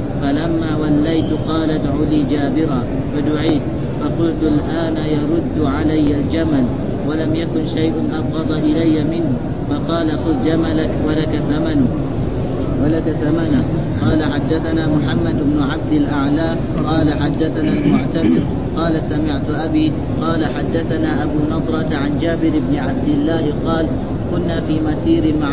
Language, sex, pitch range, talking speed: Arabic, male, 145-160 Hz, 120 wpm